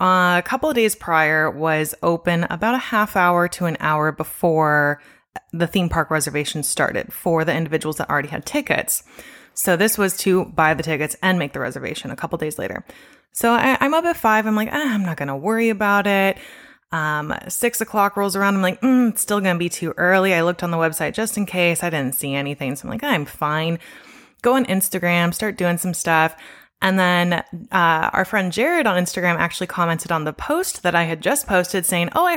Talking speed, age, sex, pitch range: 220 wpm, 20-39, female, 165-225 Hz